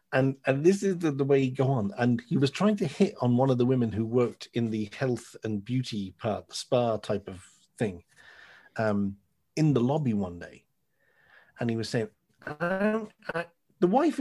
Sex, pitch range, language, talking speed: male, 115-150 Hz, English, 205 wpm